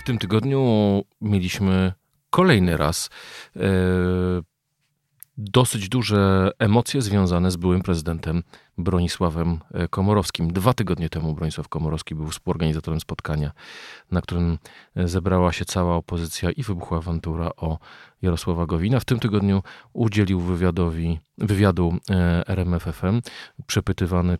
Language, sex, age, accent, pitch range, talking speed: Polish, male, 40-59, native, 85-100 Hz, 110 wpm